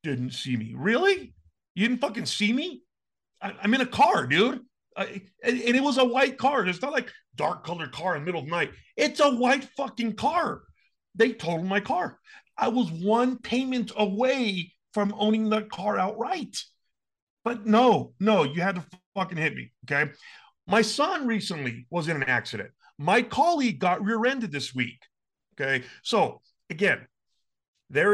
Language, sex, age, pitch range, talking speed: English, male, 40-59, 165-235 Hz, 170 wpm